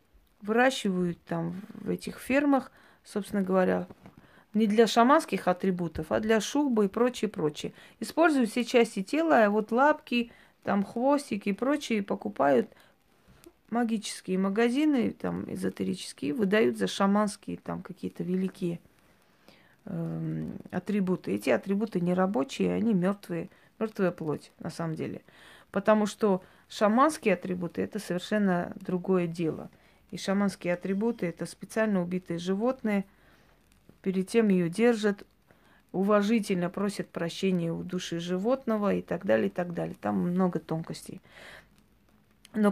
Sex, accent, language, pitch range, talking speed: female, native, Russian, 180-220 Hz, 125 wpm